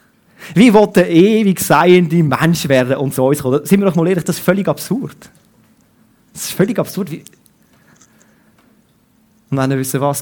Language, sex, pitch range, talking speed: German, male, 125-170 Hz, 170 wpm